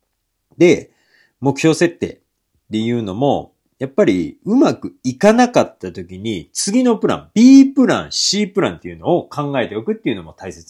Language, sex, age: Japanese, male, 40-59